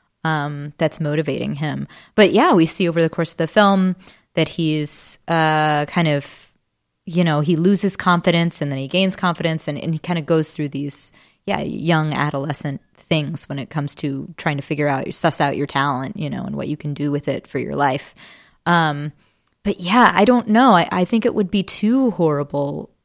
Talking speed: 205 wpm